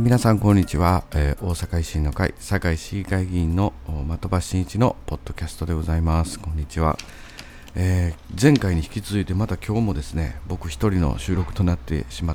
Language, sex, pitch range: Japanese, male, 75-100 Hz